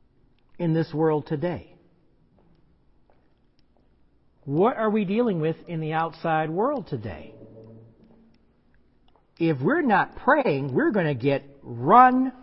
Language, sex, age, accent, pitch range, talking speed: English, male, 50-69, American, 155-210 Hz, 110 wpm